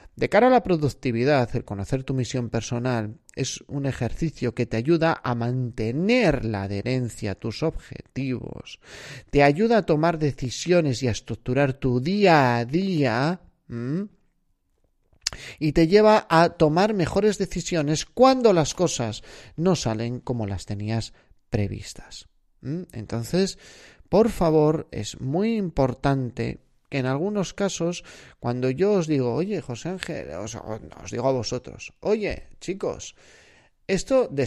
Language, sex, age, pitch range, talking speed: Spanish, male, 30-49, 115-165 Hz, 130 wpm